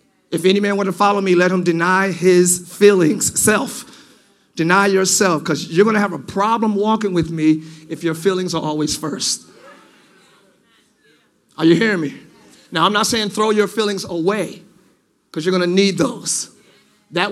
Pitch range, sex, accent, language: 185-225 Hz, male, American, English